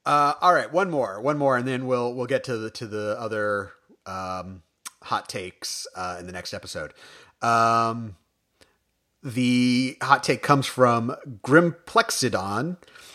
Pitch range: 115-145 Hz